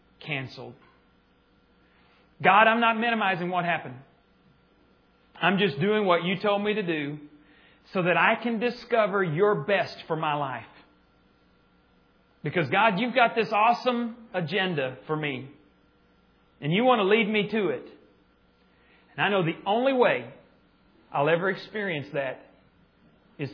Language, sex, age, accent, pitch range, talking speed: English, male, 40-59, American, 135-190 Hz, 140 wpm